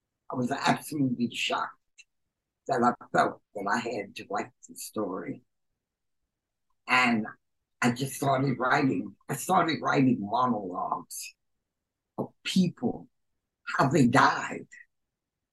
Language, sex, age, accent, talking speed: English, male, 60-79, American, 110 wpm